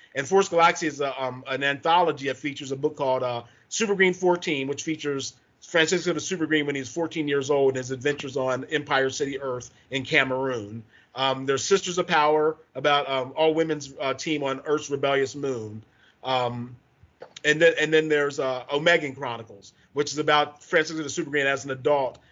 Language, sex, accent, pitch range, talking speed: English, male, American, 130-155 Hz, 185 wpm